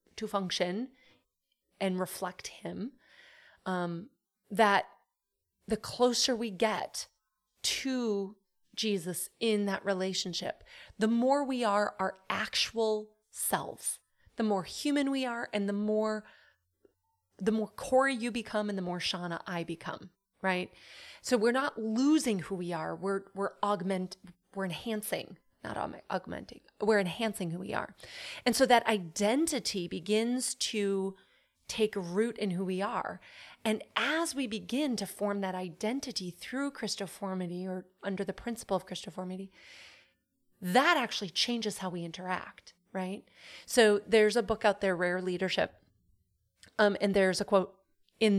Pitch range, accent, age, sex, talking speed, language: 185-230 Hz, American, 30-49, female, 140 wpm, English